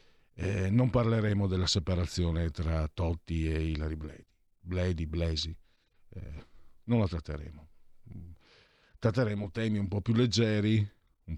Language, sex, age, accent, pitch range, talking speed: Italian, male, 50-69, native, 85-120 Hz, 115 wpm